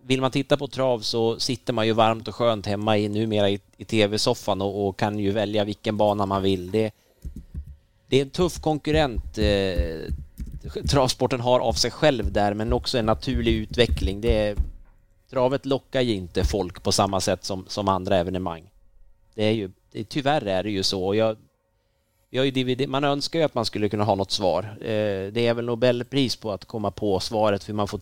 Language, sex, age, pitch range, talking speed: Swedish, male, 30-49, 100-130 Hz, 195 wpm